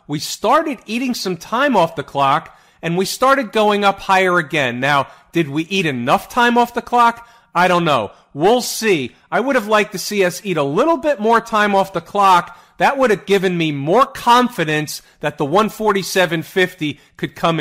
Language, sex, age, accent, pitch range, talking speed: English, male, 40-59, American, 150-205 Hz, 195 wpm